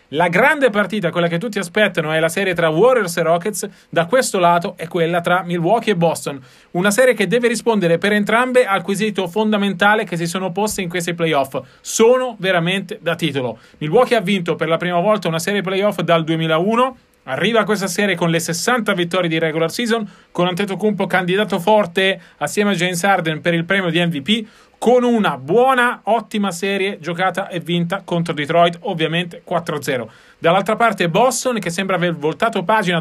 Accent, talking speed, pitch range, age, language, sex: native, 185 wpm, 170-210 Hz, 30-49, Italian, male